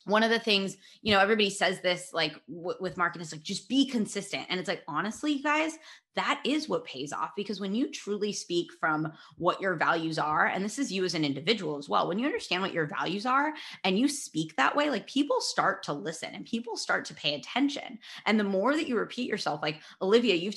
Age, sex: 20-39, female